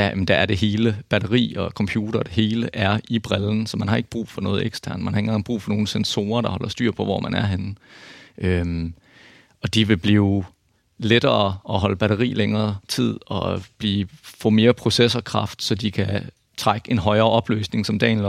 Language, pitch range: Danish, 100-115 Hz